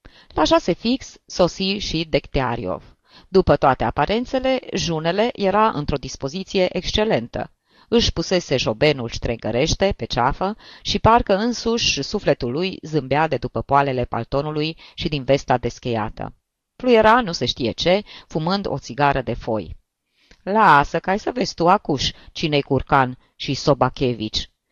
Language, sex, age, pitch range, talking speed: Romanian, female, 30-49, 130-195 Hz, 130 wpm